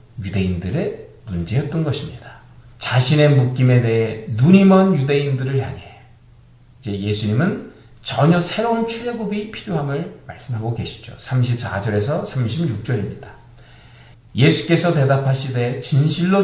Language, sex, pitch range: Korean, male, 115-150 Hz